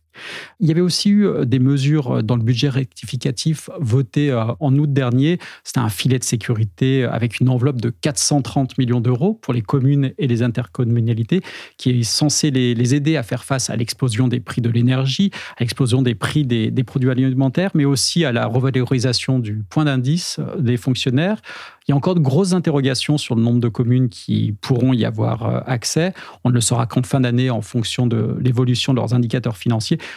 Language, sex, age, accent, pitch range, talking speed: French, male, 40-59, French, 120-145 Hz, 190 wpm